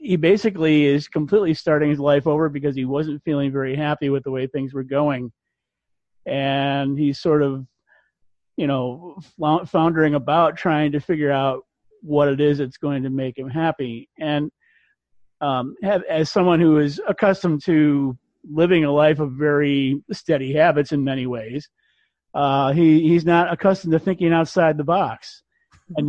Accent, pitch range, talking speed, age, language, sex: American, 140-170 Hz, 160 wpm, 40-59, English, male